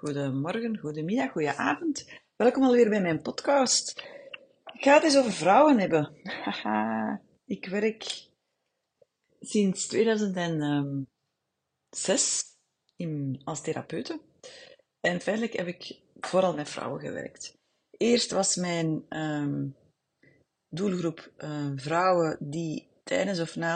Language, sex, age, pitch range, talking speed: Dutch, female, 30-49, 155-210 Hz, 110 wpm